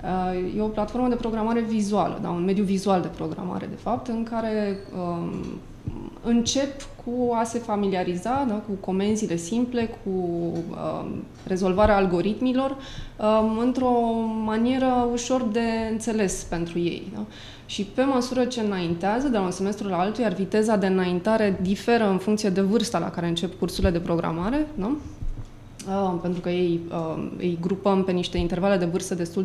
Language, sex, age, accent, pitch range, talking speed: Romanian, female, 20-39, native, 175-235 Hz, 160 wpm